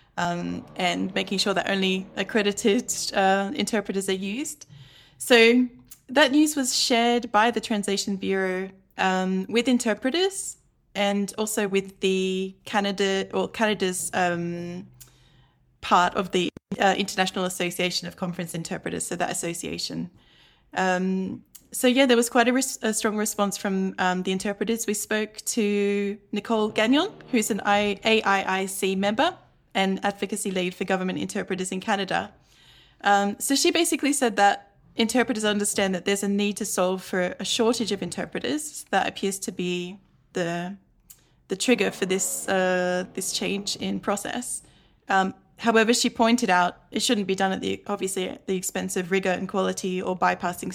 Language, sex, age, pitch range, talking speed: English, female, 10-29, 185-220 Hz, 155 wpm